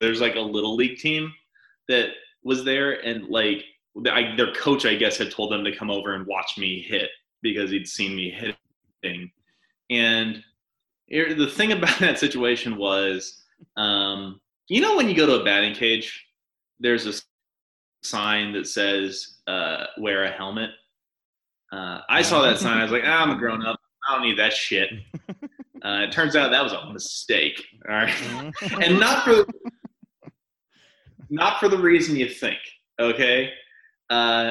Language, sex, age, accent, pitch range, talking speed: English, male, 20-39, American, 100-140 Hz, 170 wpm